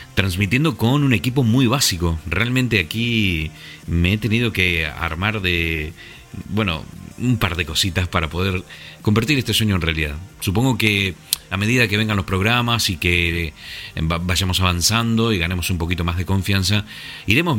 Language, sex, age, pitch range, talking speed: Spanish, male, 40-59, 85-110 Hz, 155 wpm